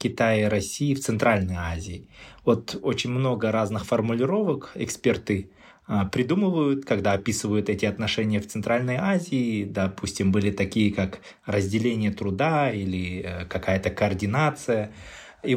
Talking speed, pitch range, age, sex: 115 wpm, 105-140 Hz, 20-39, male